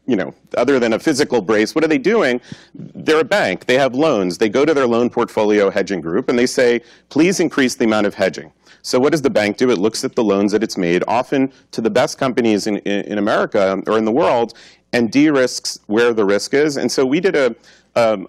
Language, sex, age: English, male, 40-59